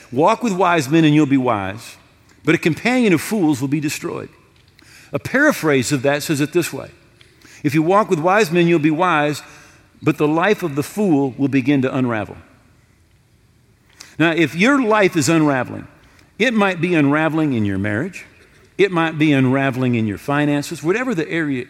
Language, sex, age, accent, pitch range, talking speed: English, male, 50-69, American, 130-185 Hz, 185 wpm